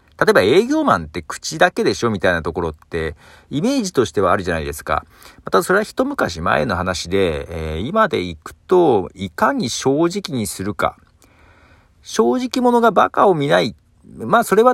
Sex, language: male, Japanese